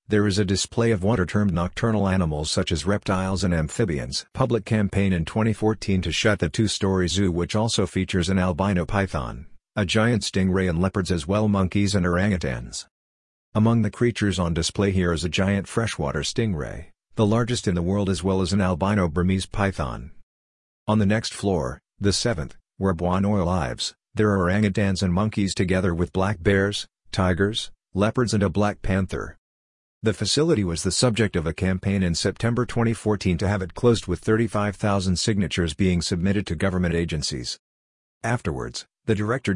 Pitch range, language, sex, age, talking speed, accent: 90-105 Hz, English, male, 50-69, 170 wpm, American